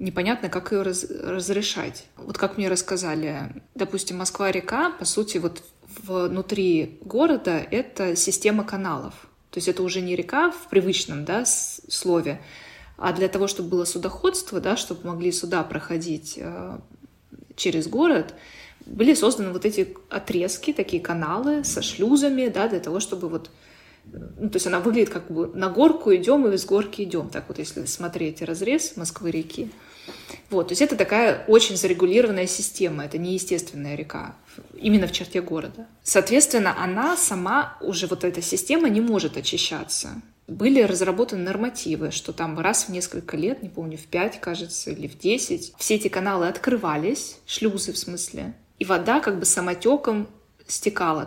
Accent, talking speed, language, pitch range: native, 155 wpm, Russian, 175-220 Hz